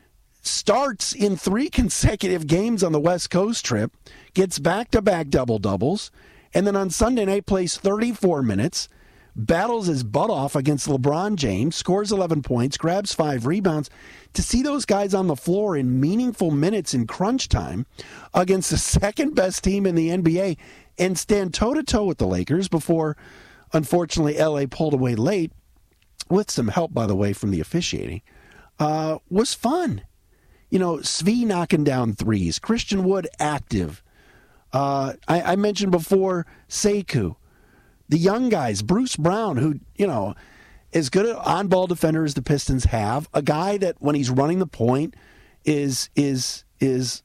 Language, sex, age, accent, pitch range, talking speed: English, male, 50-69, American, 135-195 Hz, 160 wpm